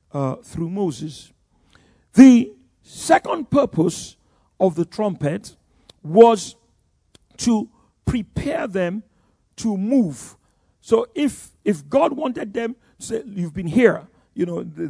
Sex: male